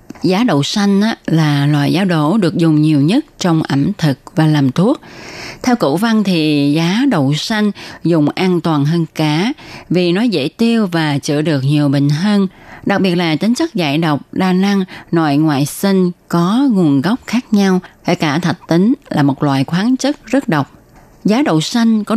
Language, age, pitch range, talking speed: Vietnamese, 20-39, 150-200 Hz, 190 wpm